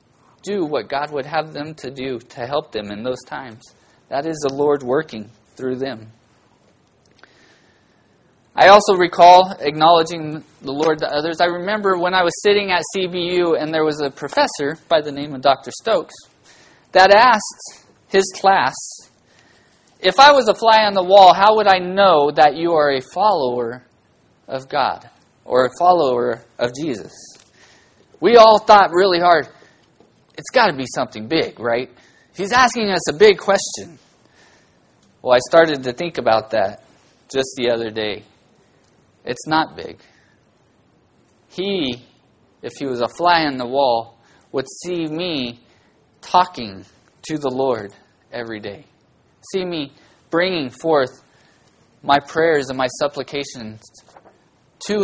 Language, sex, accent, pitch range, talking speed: English, male, American, 125-180 Hz, 150 wpm